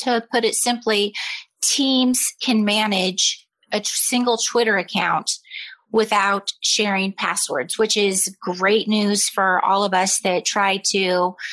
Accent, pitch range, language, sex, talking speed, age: American, 170-195 Hz, English, female, 130 wpm, 30-49